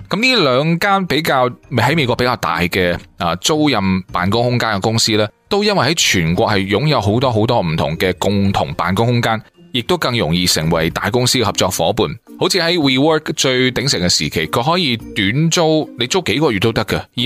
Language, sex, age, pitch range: Chinese, male, 20-39, 100-150 Hz